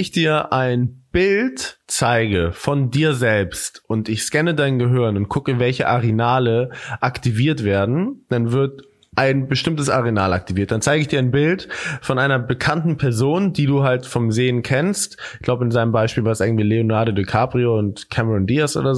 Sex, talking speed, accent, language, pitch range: male, 175 wpm, German, German, 120-155 Hz